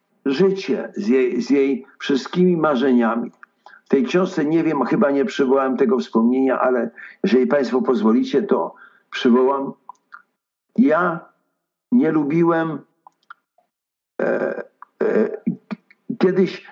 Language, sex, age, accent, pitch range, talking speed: Polish, male, 60-79, native, 125-200 Hz, 95 wpm